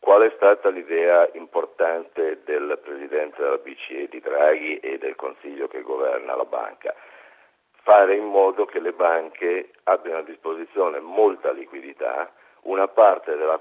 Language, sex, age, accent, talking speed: Italian, male, 50-69, native, 140 wpm